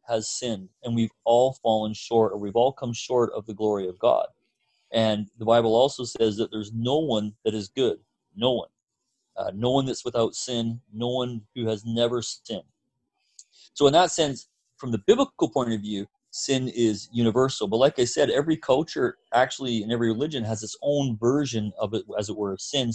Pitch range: 110-130 Hz